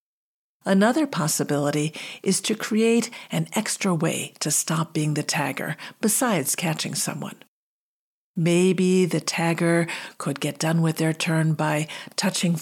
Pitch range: 155-205 Hz